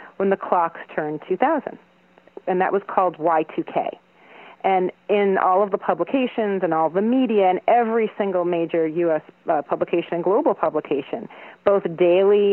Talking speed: 155 wpm